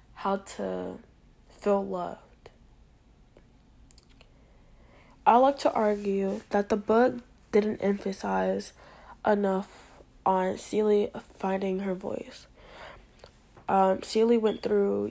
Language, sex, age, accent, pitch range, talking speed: English, female, 10-29, American, 190-210 Hz, 90 wpm